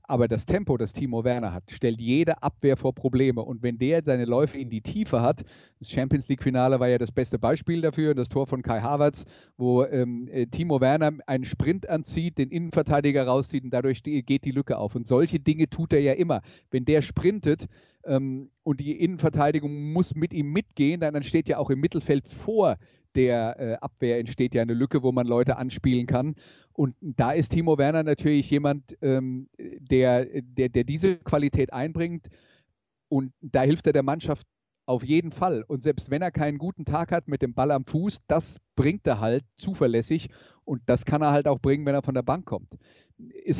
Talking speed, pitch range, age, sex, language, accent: 200 wpm, 130-150 Hz, 40-59, male, German, German